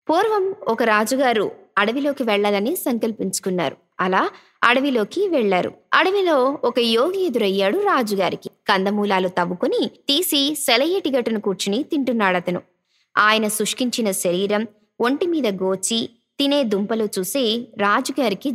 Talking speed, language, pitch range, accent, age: 100 wpm, Telugu, 200-270 Hz, native, 20-39